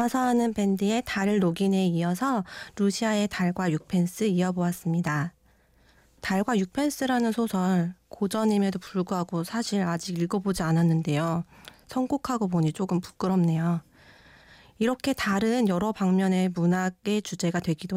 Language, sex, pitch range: Korean, female, 175-230 Hz